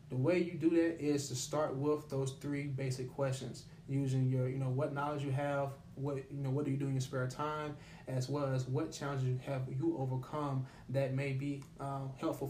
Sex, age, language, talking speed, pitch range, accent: male, 20-39, English, 215 wpm, 135-160 Hz, American